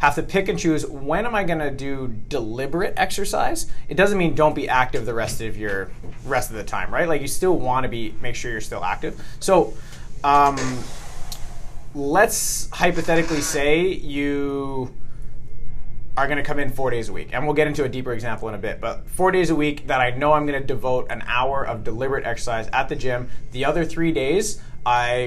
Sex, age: male, 30-49